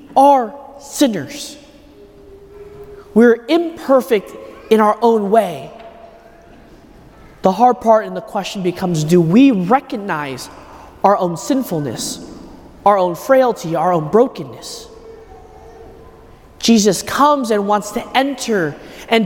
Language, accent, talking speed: English, American, 105 wpm